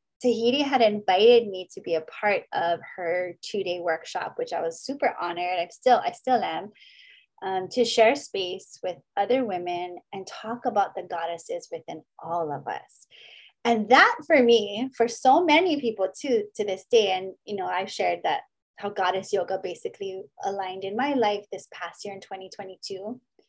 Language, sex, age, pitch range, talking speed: English, female, 20-39, 185-280 Hz, 175 wpm